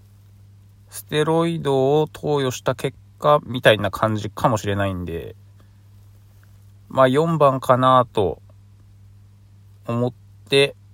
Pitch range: 100-120 Hz